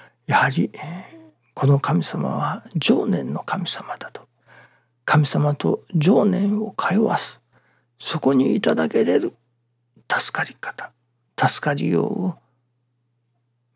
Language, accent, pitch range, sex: Japanese, native, 120-140 Hz, male